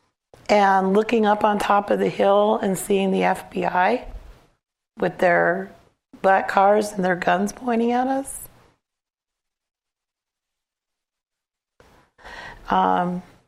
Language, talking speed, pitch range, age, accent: English, 100 wpm, 175-215 Hz, 40-59, American